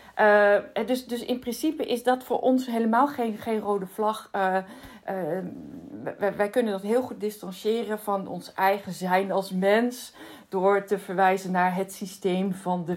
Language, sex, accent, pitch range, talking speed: Dutch, female, Dutch, 185-225 Hz, 170 wpm